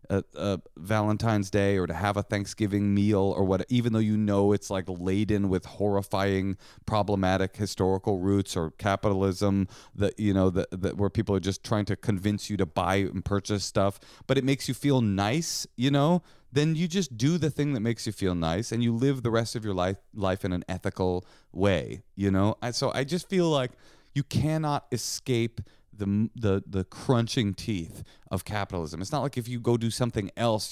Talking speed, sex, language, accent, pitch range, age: 200 wpm, male, English, American, 95-130 Hz, 30-49